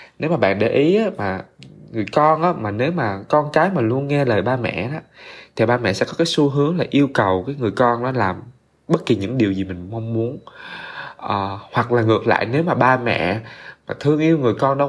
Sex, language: male, Vietnamese